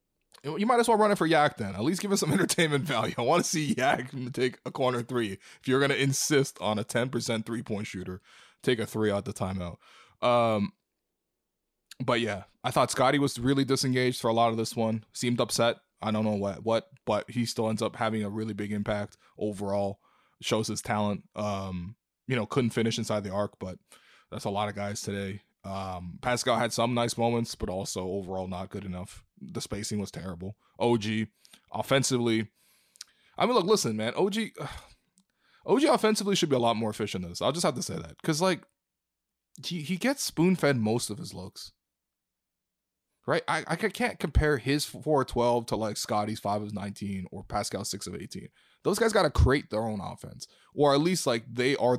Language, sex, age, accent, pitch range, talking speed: English, male, 20-39, American, 105-135 Hz, 205 wpm